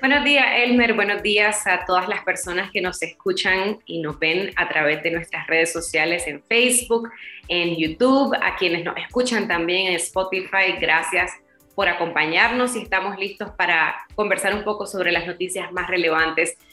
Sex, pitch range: female, 175-220 Hz